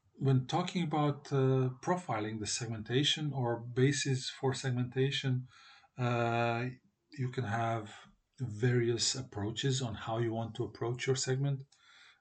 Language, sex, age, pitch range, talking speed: Croatian, male, 40-59, 105-125 Hz, 125 wpm